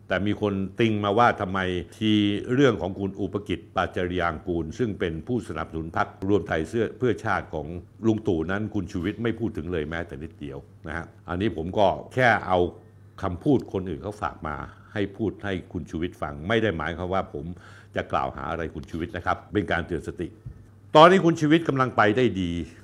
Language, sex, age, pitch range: Thai, male, 70-89, 85-110 Hz